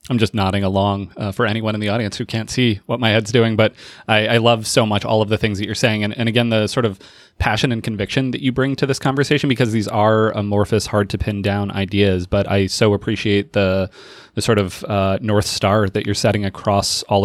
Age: 30-49